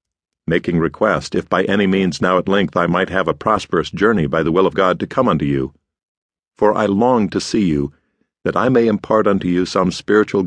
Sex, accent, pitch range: male, American, 90-110 Hz